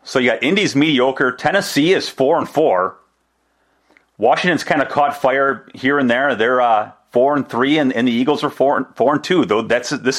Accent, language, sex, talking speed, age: American, English, male, 210 wpm, 30-49